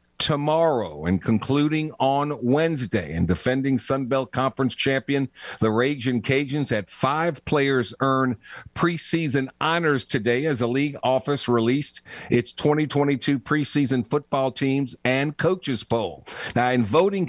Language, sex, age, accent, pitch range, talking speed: English, male, 50-69, American, 120-150 Hz, 130 wpm